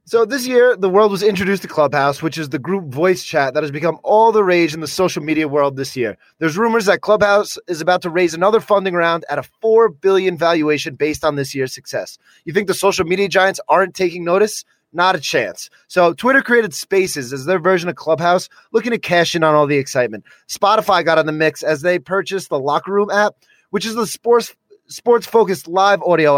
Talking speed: 225 wpm